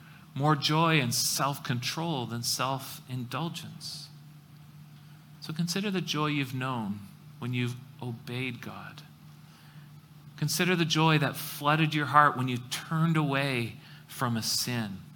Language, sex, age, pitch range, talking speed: English, male, 40-59, 135-155 Hz, 120 wpm